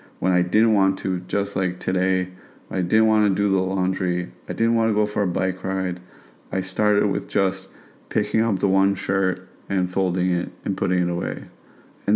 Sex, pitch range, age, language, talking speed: male, 95-105 Hz, 30-49, English, 200 wpm